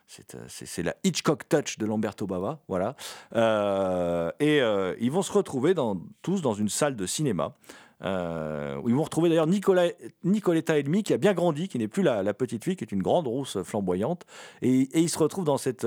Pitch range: 110-170 Hz